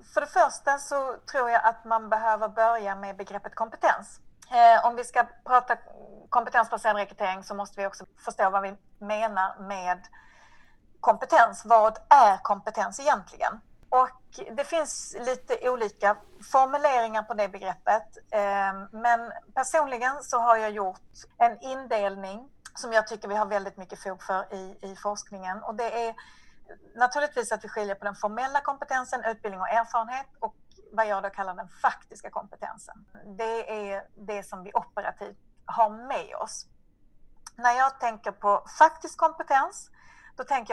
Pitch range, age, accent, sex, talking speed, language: 205-255 Hz, 40-59, native, female, 150 wpm, Swedish